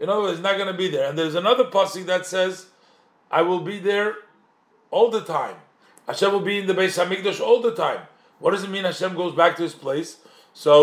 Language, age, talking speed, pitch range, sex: English, 50-69, 240 wpm, 175-230 Hz, male